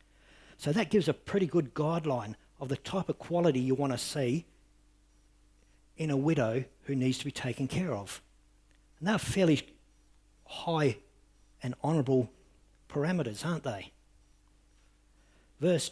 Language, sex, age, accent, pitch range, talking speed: English, male, 60-79, Australian, 115-155 Hz, 135 wpm